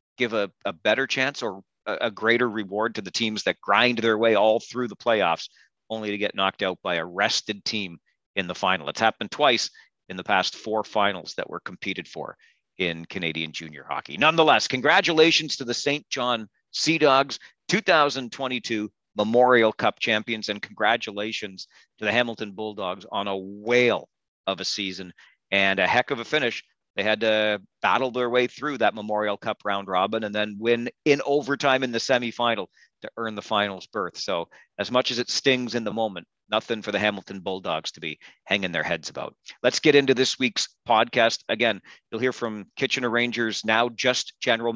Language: English